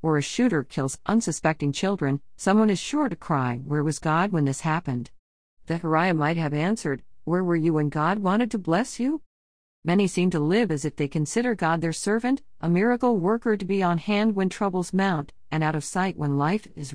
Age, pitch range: 50-69, 150-200 Hz